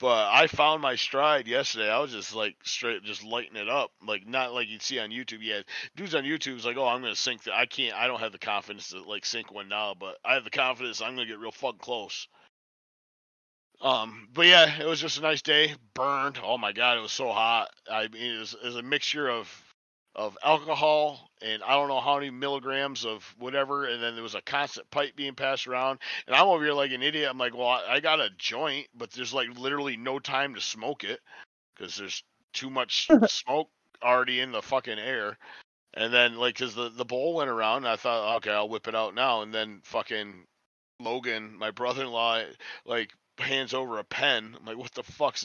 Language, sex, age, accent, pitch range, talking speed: English, male, 40-59, American, 120-150 Hz, 225 wpm